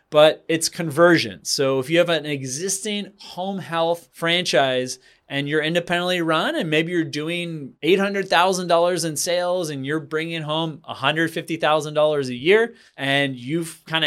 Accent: American